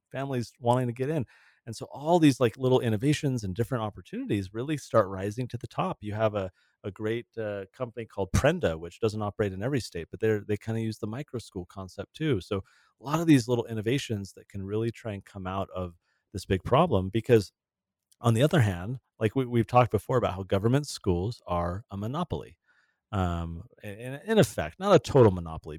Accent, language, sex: American, English, male